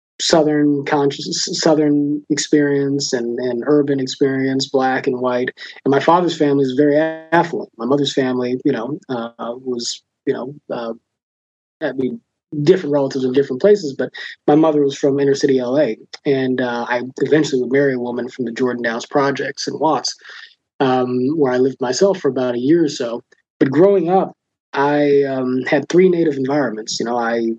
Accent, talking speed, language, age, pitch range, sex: American, 175 wpm, English, 30-49, 130-150 Hz, male